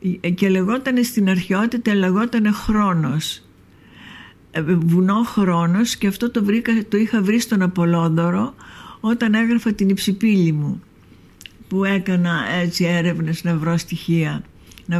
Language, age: Greek, 60-79